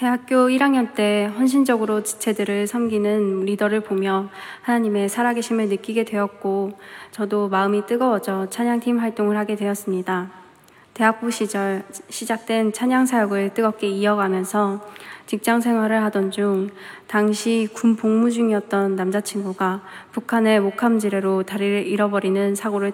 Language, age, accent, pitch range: Korean, 20-39, native, 195-225 Hz